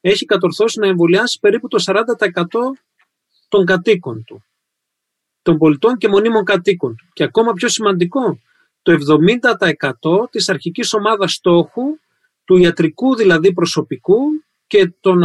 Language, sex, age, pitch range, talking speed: Greek, male, 40-59, 165-215 Hz, 125 wpm